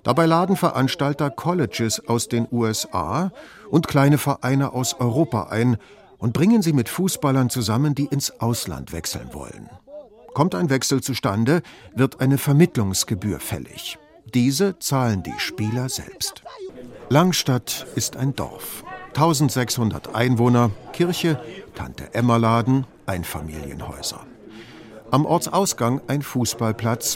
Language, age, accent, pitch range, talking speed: German, 50-69, German, 115-150 Hz, 115 wpm